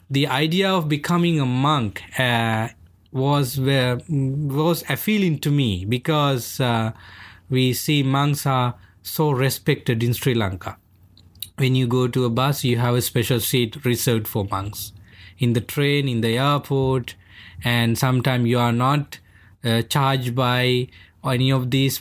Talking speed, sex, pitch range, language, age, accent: 150 wpm, male, 115-145 Hz, English, 20-39, Indian